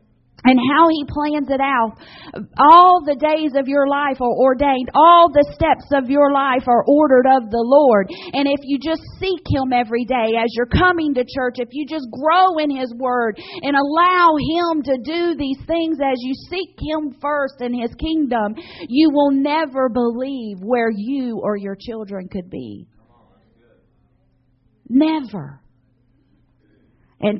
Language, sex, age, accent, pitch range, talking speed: English, female, 40-59, American, 185-280 Hz, 160 wpm